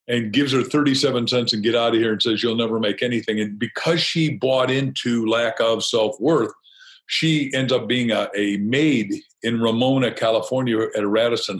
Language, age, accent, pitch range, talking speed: English, 50-69, American, 115-145 Hz, 190 wpm